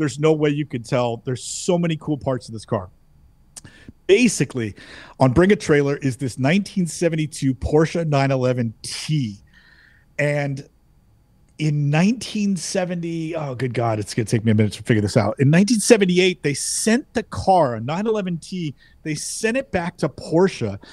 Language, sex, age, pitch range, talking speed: English, male, 40-59, 130-180 Hz, 160 wpm